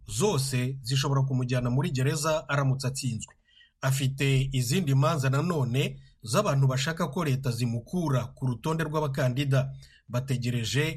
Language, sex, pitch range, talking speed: Swahili, male, 125-155 Hz, 105 wpm